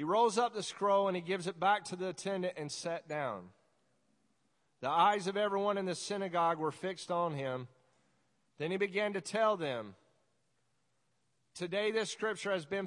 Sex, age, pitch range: male, 40-59, 155-195 Hz